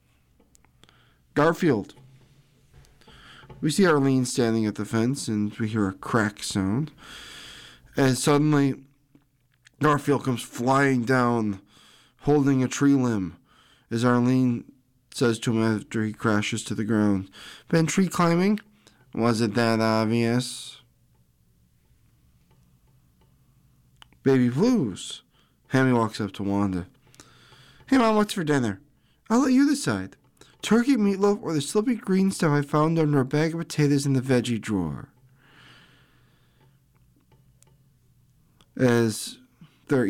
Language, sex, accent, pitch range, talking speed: English, male, American, 110-145 Hz, 115 wpm